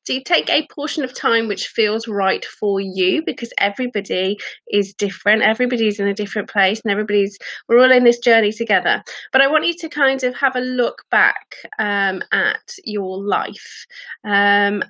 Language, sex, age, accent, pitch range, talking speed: English, female, 30-49, British, 205-275 Hz, 180 wpm